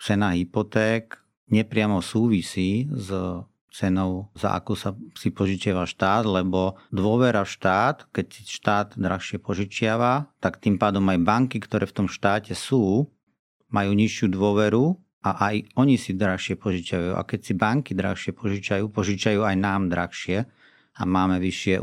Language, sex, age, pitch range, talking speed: Slovak, male, 40-59, 95-110 Hz, 145 wpm